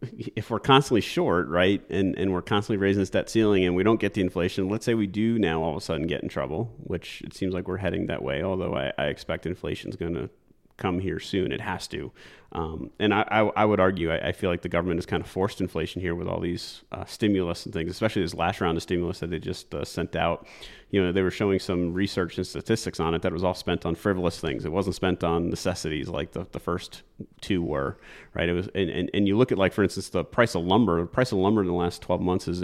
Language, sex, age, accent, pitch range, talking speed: English, male, 30-49, American, 90-105 Hz, 270 wpm